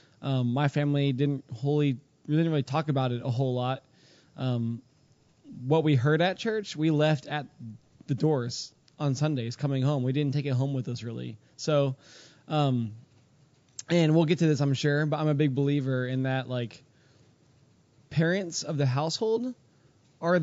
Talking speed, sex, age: 175 wpm, male, 20-39